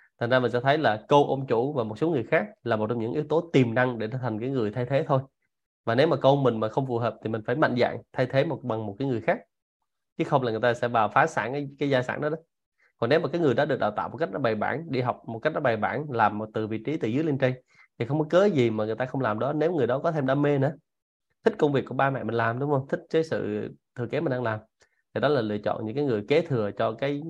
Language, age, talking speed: Vietnamese, 20-39, 320 wpm